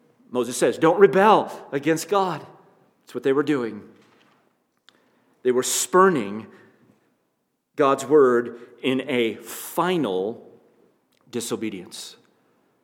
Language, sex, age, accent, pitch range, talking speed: English, male, 50-69, American, 115-160 Hz, 95 wpm